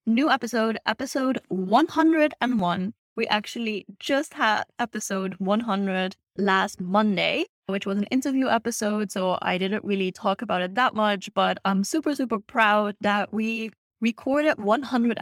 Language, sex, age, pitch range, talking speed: English, female, 20-39, 195-235 Hz, 140 wpm